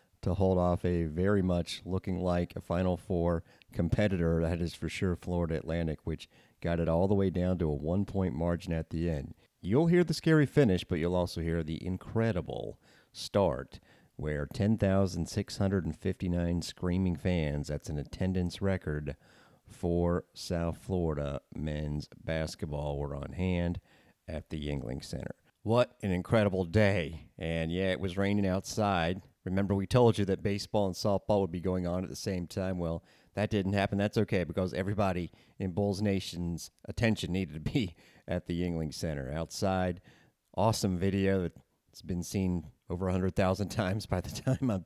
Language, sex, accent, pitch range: English, male, American, 85-100 Hz